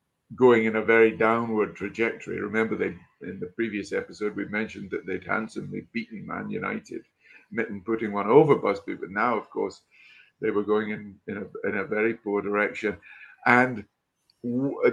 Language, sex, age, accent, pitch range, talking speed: English, male, 50-69, British, 100-120 Hz, 170 wpm